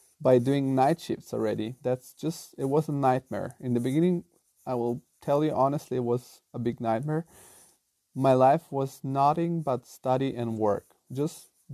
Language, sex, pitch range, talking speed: English, male, 130-165 Hz, 170 wpm